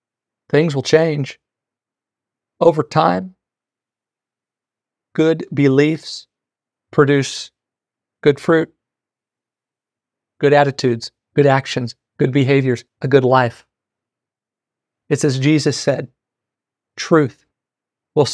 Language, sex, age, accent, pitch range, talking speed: English, male, 40-59, American, 130-150 Hz, 80 wpm